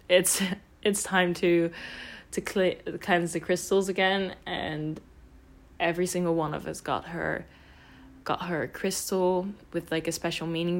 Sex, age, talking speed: female, 10-29, 150 wpm